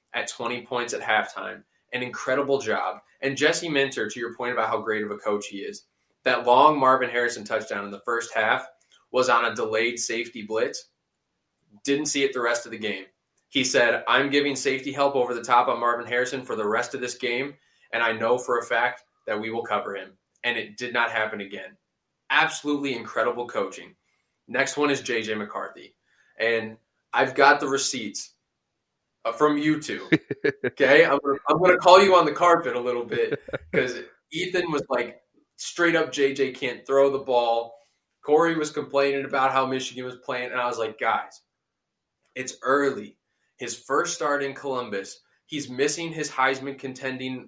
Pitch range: 115-145 Hz